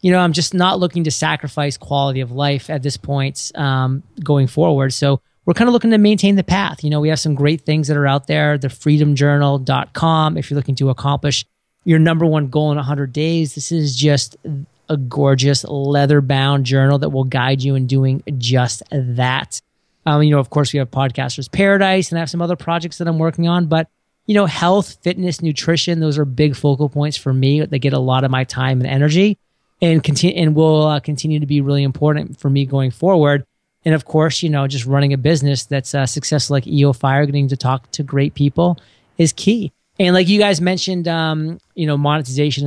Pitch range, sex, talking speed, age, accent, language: 140-160 Hz, male, 215 wpm, 30-49, American, English